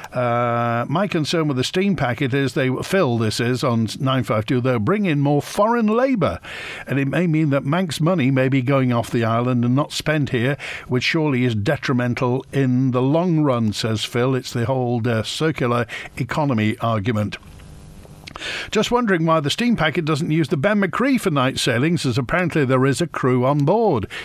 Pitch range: 125-160 Hz